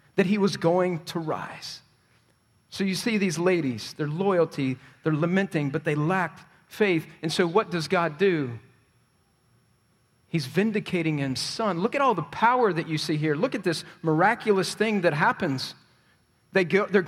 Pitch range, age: 160-210 Hz, 40-59